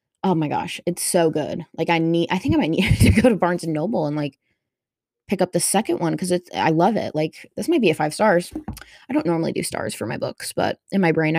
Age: 20-39